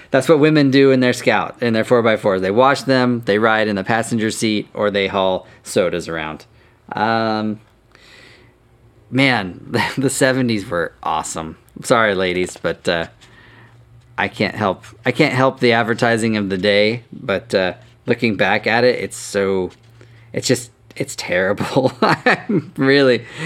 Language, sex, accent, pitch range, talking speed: English, male, American, 100-125 Hz, 160 wpm